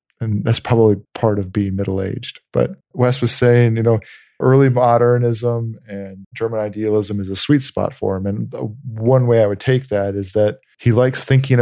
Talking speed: 185 wpm